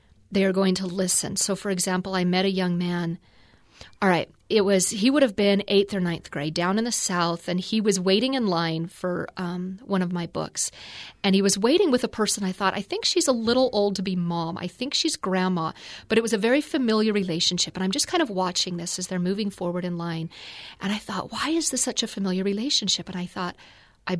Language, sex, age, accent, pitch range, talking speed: English, female, 40-59, American, 175-210 Hz, 240 wpm